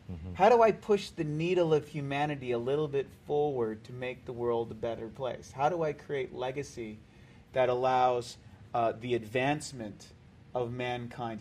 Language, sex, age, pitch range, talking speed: English, male, 30-49, 120-150 Hz, 165 wpm